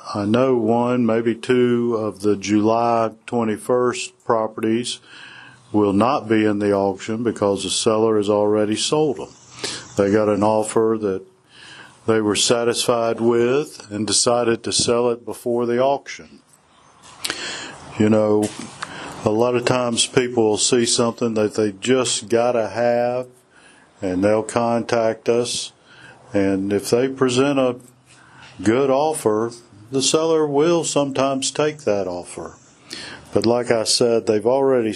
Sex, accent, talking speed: male, American, 135 wpm